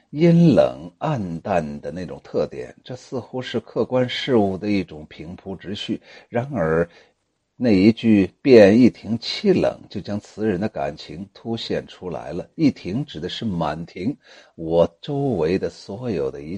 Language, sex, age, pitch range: Chinese, male, 60-79, 95-150 Hz